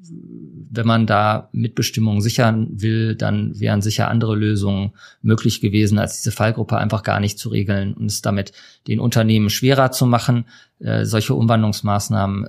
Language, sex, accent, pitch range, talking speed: German, male, German, 105-125 Hz, 155 wpm